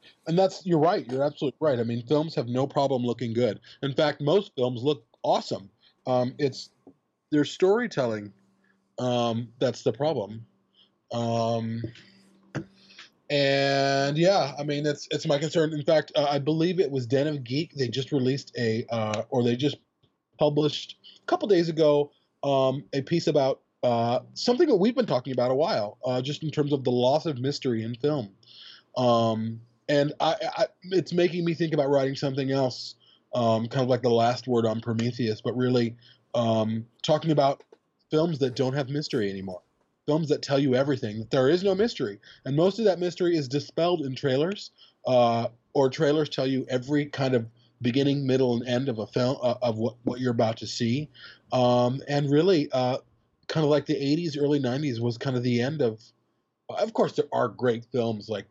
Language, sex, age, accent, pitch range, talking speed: English, male, 20-39, American, 120-150 Hz, 190 wpm